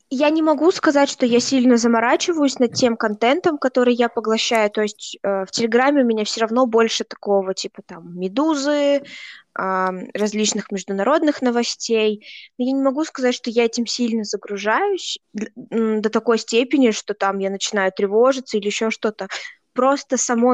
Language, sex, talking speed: Russian, female, 155 wpm